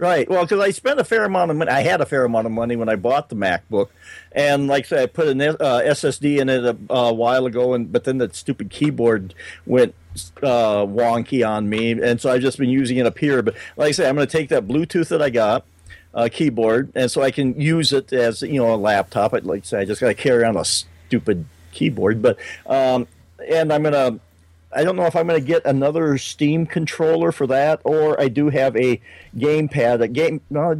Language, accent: English, American